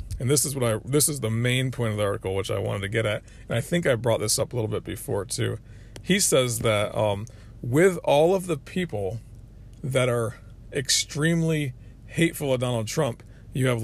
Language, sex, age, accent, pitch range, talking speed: English, male, 40-59, American, 110-140 Hz, 210 wpm